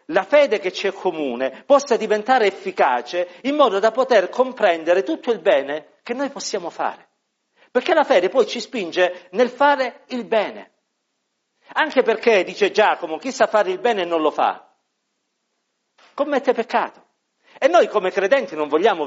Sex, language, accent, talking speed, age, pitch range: male, Italian, native, 160 wpm, 50-69, 180-250 Hz